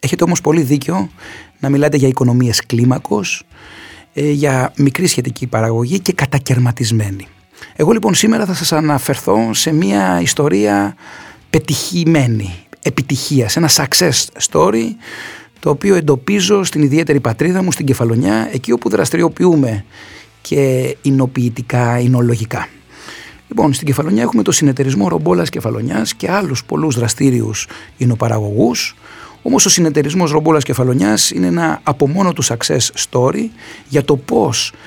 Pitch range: 115-155 Hz